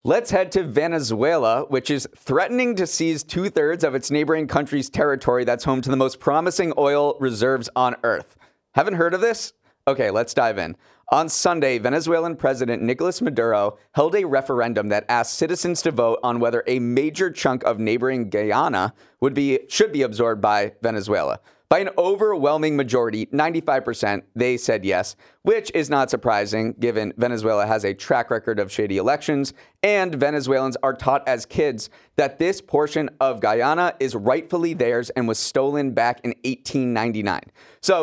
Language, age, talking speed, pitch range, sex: English, 30-49, 165 wpm, 115-155 Hz, male